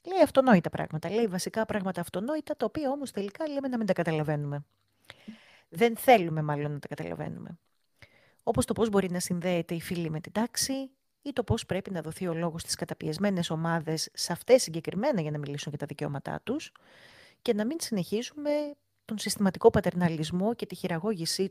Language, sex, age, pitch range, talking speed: Greek, female, 30-49, 165-225 Hz, 180 wpm